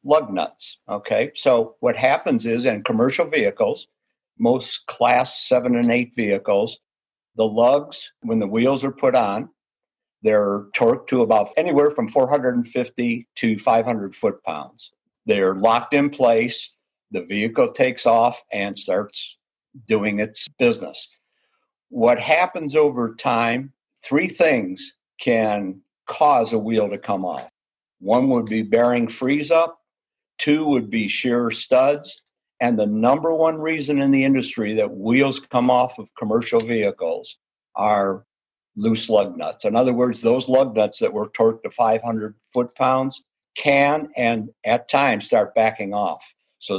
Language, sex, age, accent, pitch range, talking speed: English, male, 50-69, American, 110-145 Hz, 140 wpm